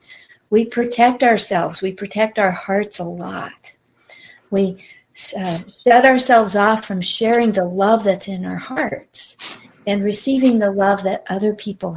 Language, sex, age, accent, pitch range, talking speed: English, female, 50-69, American, 200-255 Hz, 145 wpm